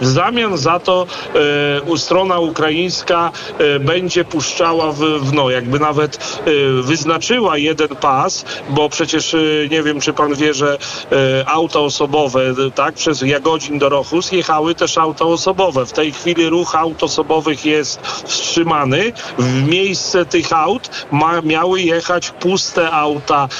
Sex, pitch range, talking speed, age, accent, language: male, 145-170 Hz, 150 wpm, 40-59, native, Polish